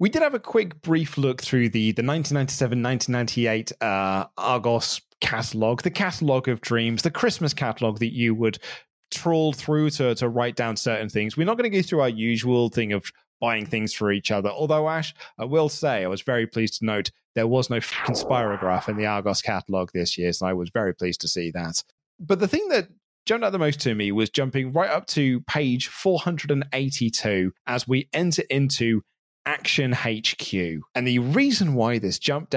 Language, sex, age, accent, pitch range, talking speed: English, male, 20-39, British, 110-145 Hz, 195 wpm